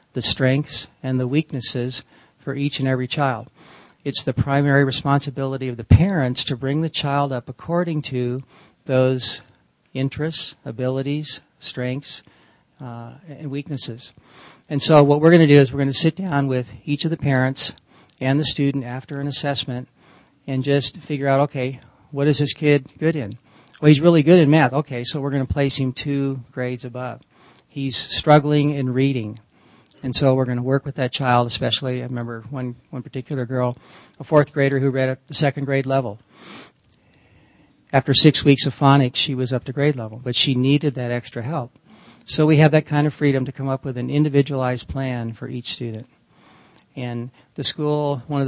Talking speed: 180 wpm